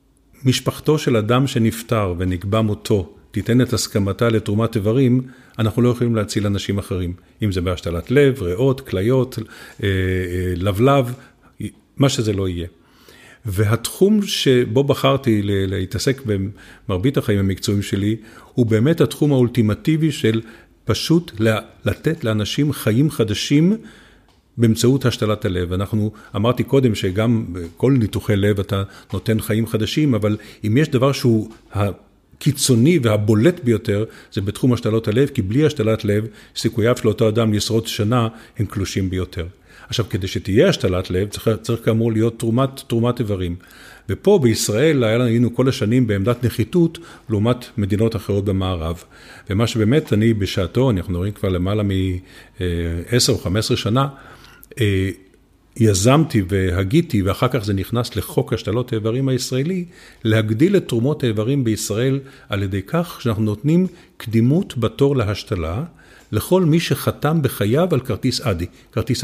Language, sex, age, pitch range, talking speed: Hebrew, male, 50-69, 100-130 Hz, 130 wpm